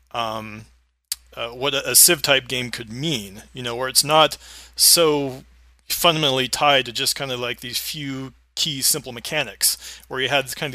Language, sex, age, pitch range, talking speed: English, male, 30-49, 115-145 Hz, 180 wpm